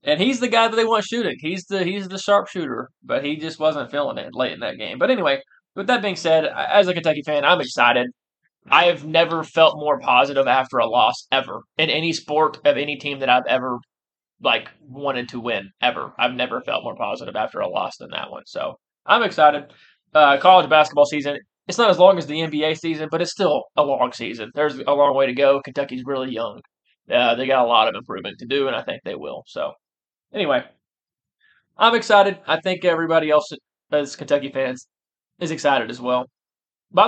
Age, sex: 20-39, male